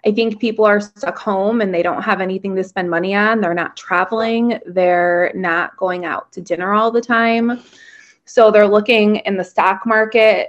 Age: 20-39